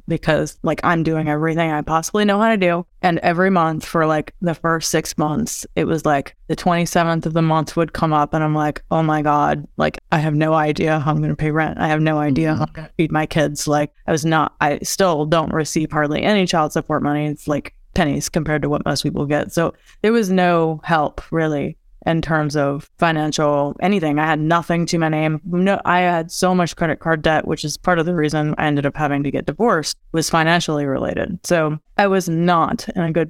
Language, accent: English, American